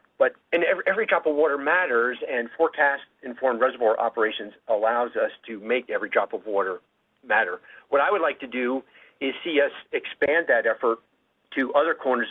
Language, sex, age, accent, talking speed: English, male, 50-69, American, 170 wpm